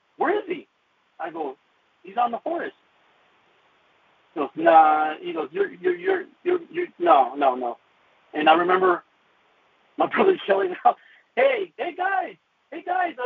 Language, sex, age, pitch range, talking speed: English, male, 50-69, 255-375 Hz, 155 wpm